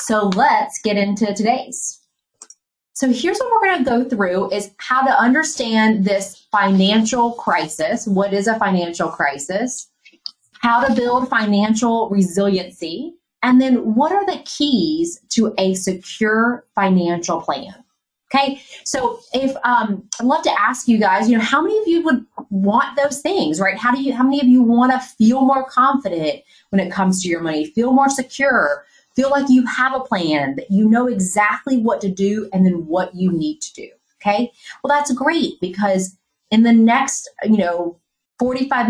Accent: American